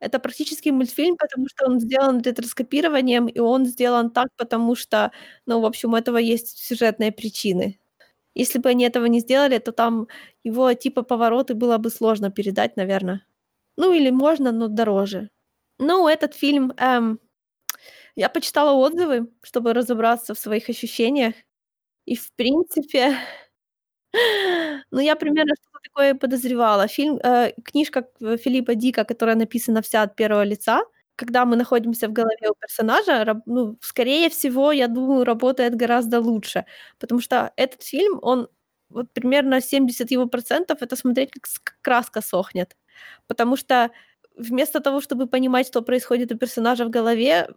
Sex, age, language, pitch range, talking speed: female, 20-39, Ukrainian, 230-270 Hz, 145 wpm